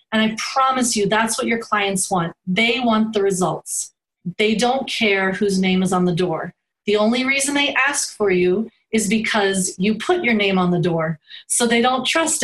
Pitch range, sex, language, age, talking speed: 195-235 Hz, female, English, 30-49, 205 wpm